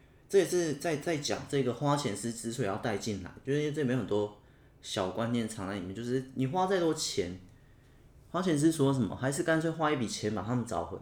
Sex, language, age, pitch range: male, Chinese, 20-39, 100-135 Hz